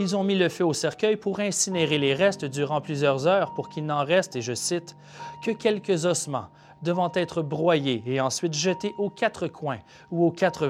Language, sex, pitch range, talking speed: French, male, 140-195 Hz, 210 wpm